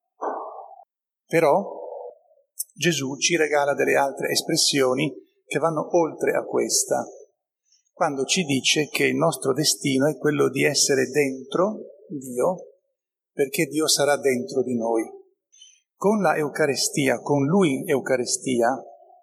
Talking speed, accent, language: 115 wpm, native, Italian